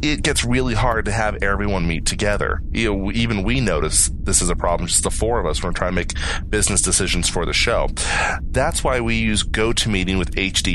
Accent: American